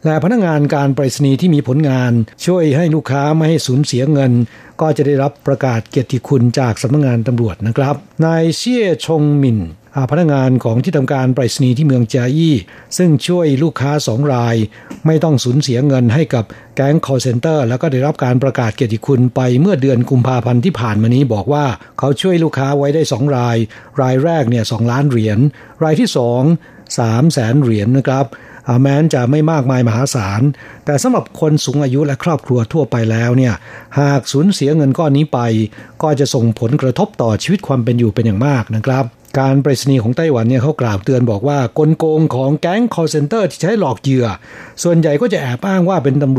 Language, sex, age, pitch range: Thai, male, 60-79, 120-150 Hz